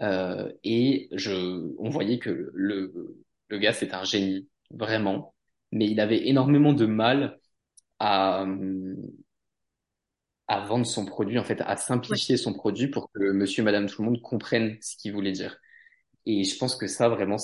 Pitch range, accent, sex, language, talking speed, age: 95-115 Hz, French, male, French, 165 wpm, 20-39